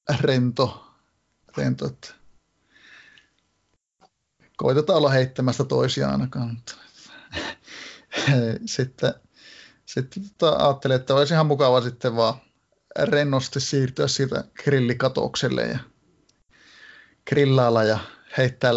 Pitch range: 120-140 Hz